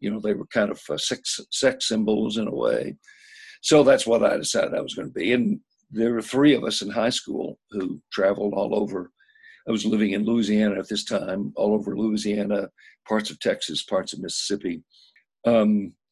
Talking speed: 195 wpm